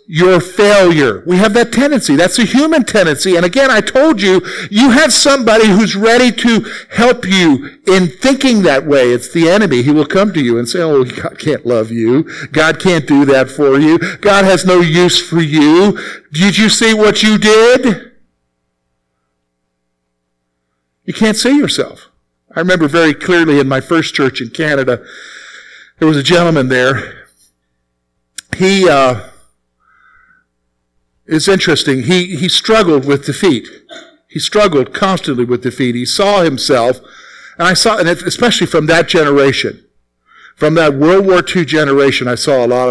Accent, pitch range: American, 125-195 Hz